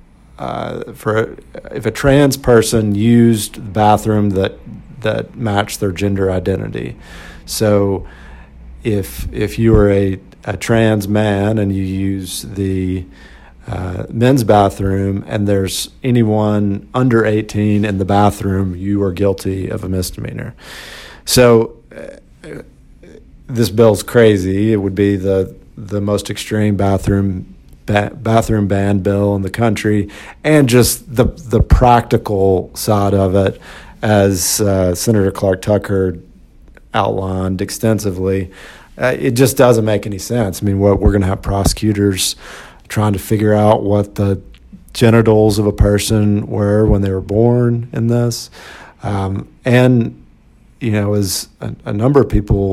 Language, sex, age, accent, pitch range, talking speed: English, male, 50-69, American, 95-110 Hz, 140 wpm